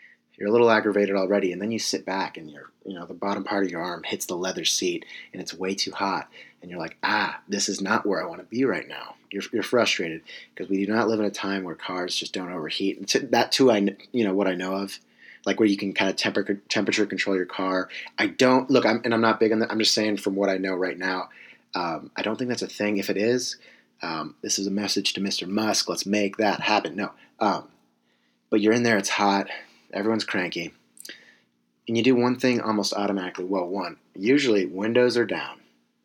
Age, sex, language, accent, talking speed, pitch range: 30-49, male, English, American, 240 wpm, 95-110 Hz